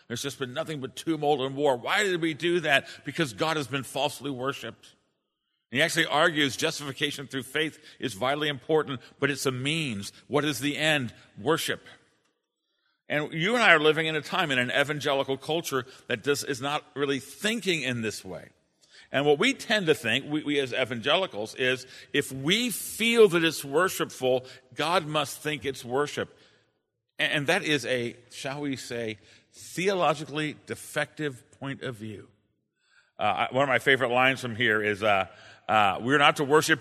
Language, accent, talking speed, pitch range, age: English, American, 175 wpm, 125-155 Hz, 50-69